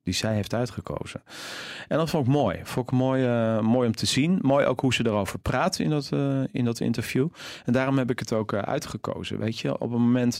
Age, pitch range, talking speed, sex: 40-59, 105-130 Hz, 240 wpm, male